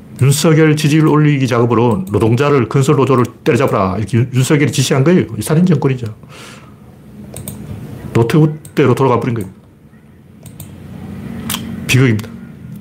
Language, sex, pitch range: Korean, male, 105-150 Hz